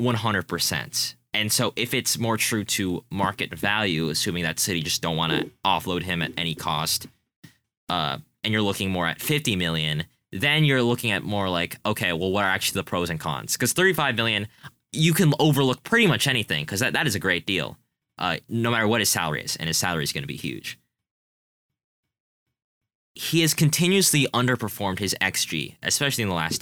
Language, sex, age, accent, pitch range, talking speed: English, male, 10-29, American, 90-120 Hz, 195 wpm